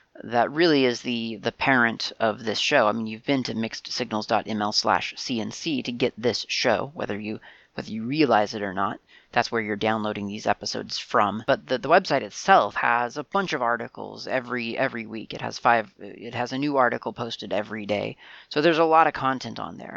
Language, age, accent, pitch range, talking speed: English, 30-49, American, 110-130 Hz, 200 wpm